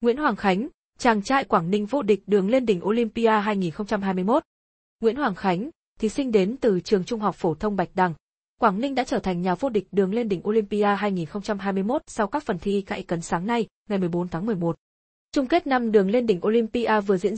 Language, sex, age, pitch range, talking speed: Vietnamese, female, 20-39, 190-235 Hz, 215 wpm